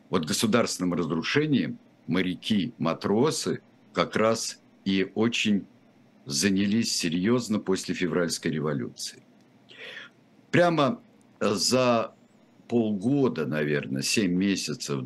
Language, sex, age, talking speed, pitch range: Russian, male, 60-79, 75 wpm, 90-120 Hz